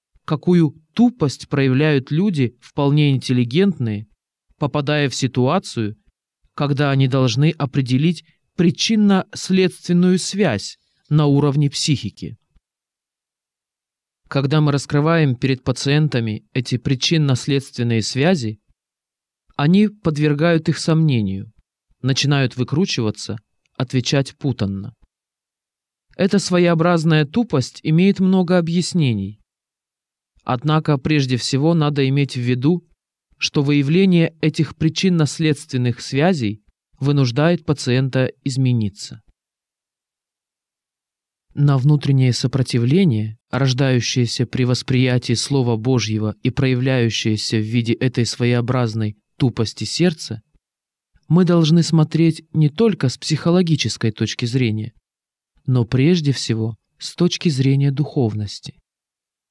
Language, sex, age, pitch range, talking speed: Russian, male, 20-39, 120-160 Hz, 90 wpm